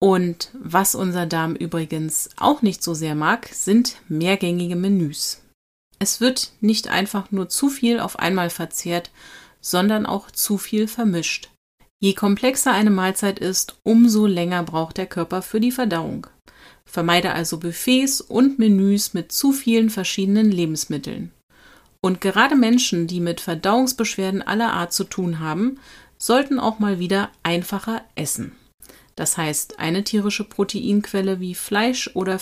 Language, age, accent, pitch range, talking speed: German, 30-49, German, 170-230 Hz, 140 wpm